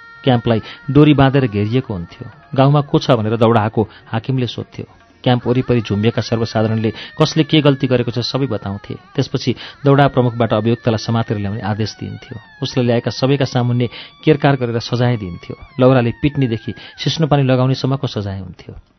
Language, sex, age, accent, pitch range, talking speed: English, male, 40-59, Indian, 110-135 Hz, 160 wpm